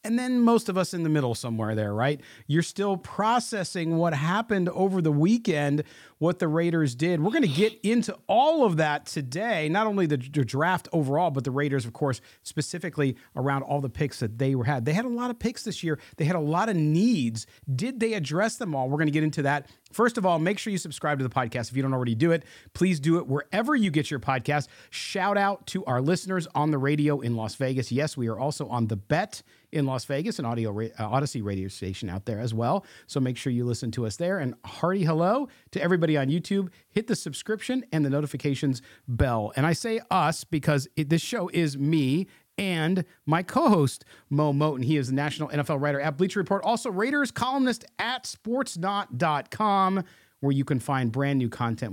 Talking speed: 215 wpm